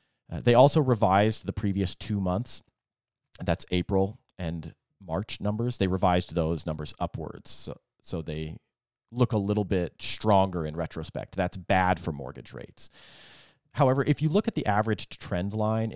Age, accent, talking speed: 30-49, American, 160 wpm